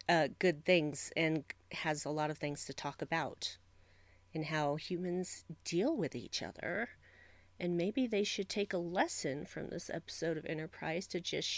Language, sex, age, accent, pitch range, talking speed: English, female, 40-59, American, 155-200 Hz, 170 wpm